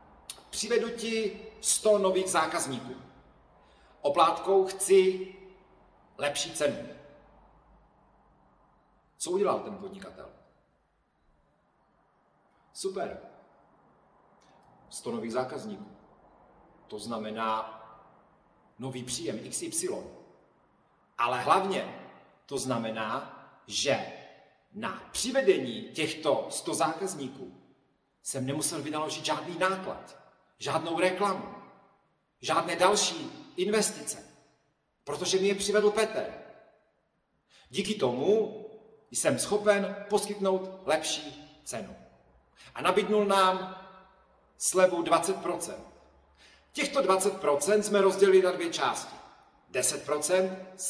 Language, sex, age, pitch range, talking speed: Slovak, male, 40-59, 155-210 Hz, 80 wpm